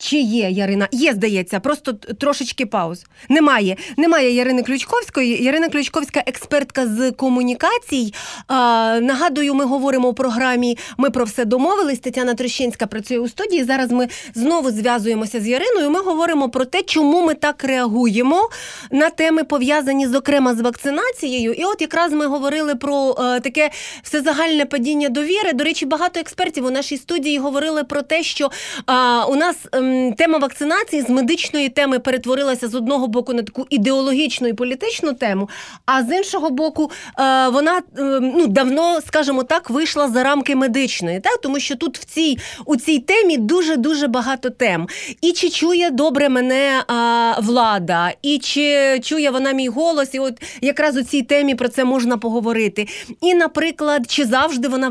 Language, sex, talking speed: Ukrainian, female, 160 wpm